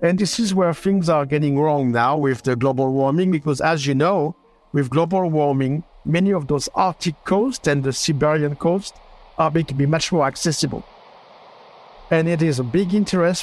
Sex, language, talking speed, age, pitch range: male, English, 190 wpm, 60-79, 140-185 Hz